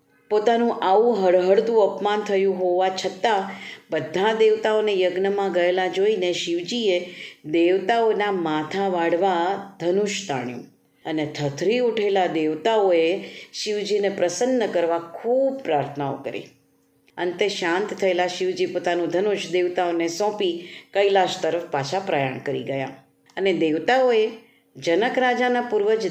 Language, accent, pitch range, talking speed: Gujarati, native, 170-220 Hz, 105 wpm